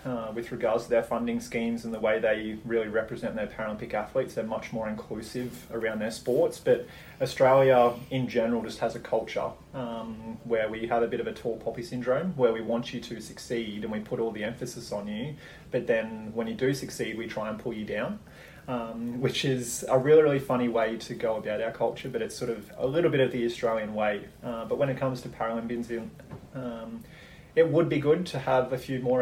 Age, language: 20-39, English